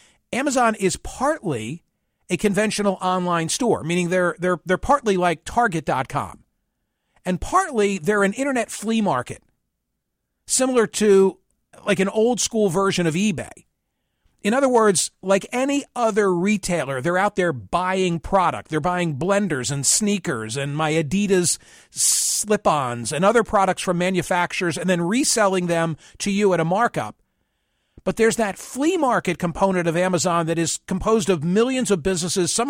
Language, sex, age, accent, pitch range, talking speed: English, male, 50-69, American, 165-210 Hz, 150 wpm